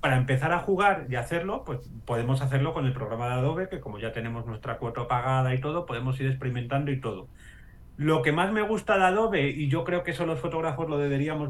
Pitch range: 120-155 Hz